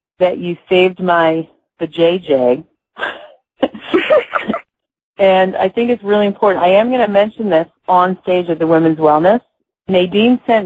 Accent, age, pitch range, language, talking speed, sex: American, 40-59, 165-195 Hz, English, 145 wpm, female